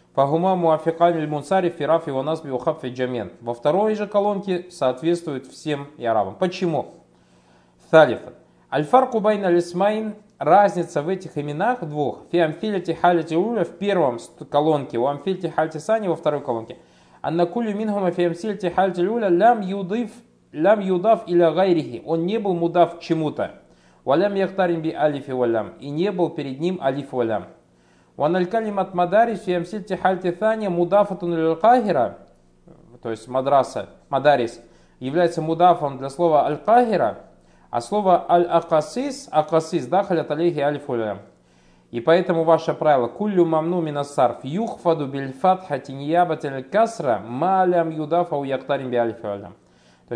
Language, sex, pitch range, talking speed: Russian, male, 135-185 Hz, 115 wpm